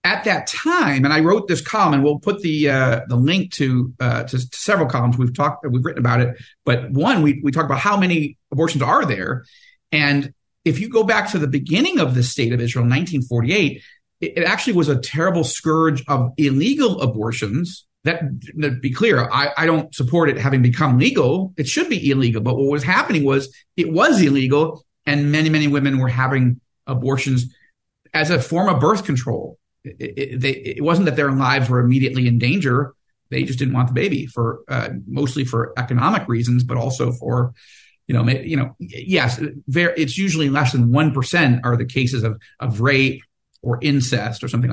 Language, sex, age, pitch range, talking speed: English, male, 50-69, 125-160 Hz, 195 wpm